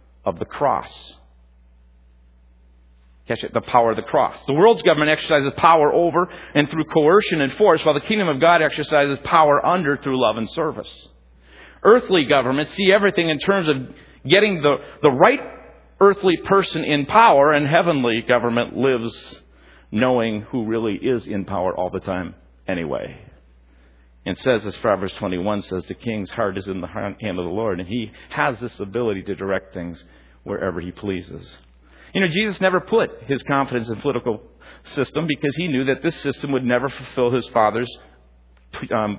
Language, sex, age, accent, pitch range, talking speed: English, male, 50-69, American, 90-150 Hz, 170 wpm